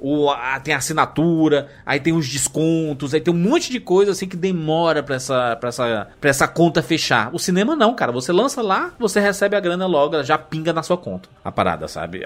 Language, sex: Portuguese, male